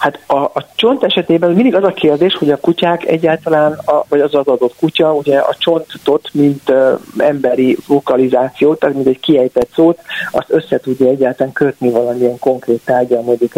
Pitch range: 130-160 Hz